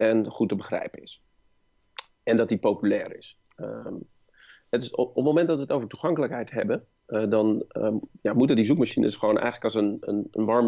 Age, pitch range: 40-59, 105-120 Hz